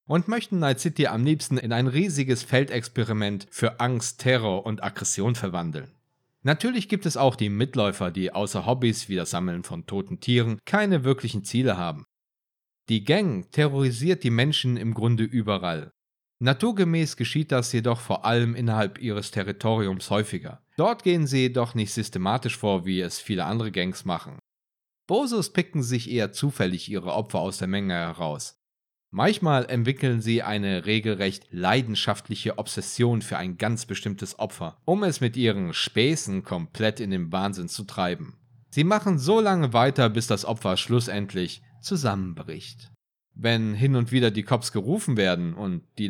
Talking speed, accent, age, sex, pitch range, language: 155 wpm, German, 40-59, male, 100-135 Hz, German